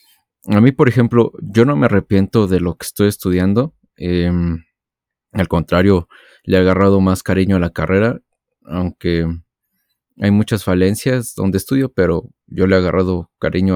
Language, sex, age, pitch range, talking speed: Spanish, male, 30-49, 90-115 Hz, 155 wpm